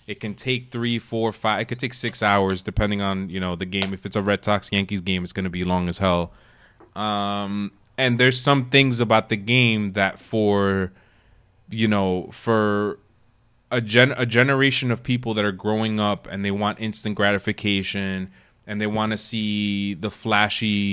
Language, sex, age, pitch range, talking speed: English, male, 20-39, 100-120 Hz, 185 wpm